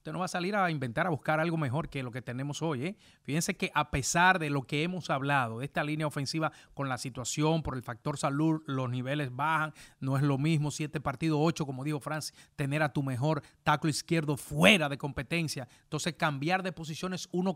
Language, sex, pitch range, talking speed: English, male, 135-165 Hz, 220 wpm